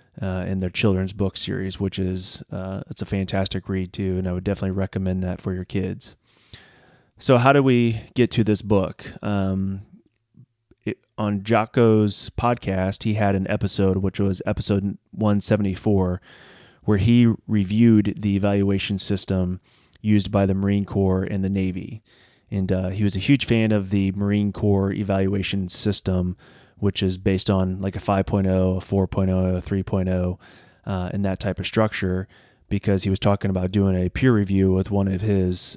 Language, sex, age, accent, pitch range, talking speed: English, male, 30-49, American, 95-105 Hz, 170 wpm